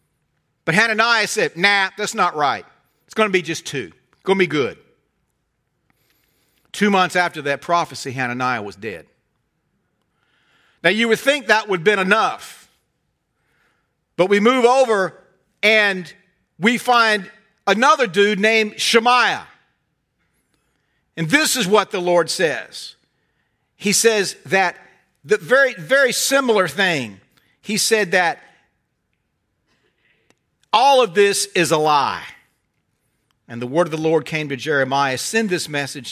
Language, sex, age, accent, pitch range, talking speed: English, male, 50-69, American, 135-205 Hz, 135 wpm